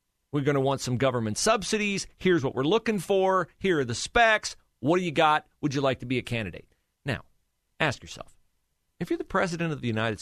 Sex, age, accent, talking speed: male, 40-59, American, 215 wpm